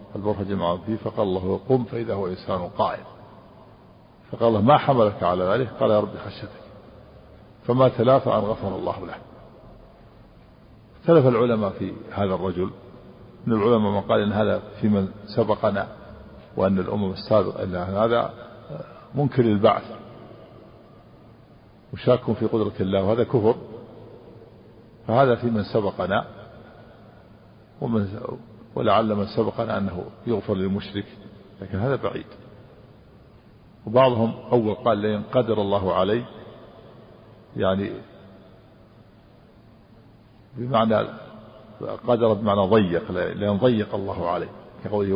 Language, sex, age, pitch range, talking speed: Arabic, male, 50-69, 100-115 Hz, 110 wpm